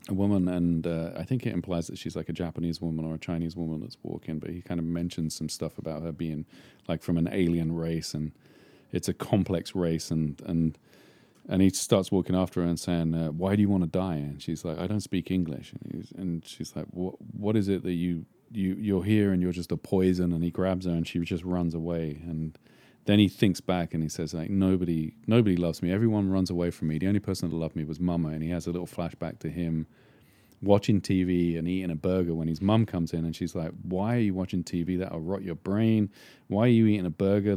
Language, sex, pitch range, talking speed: English, male, 85-100 Hz, 250 wpm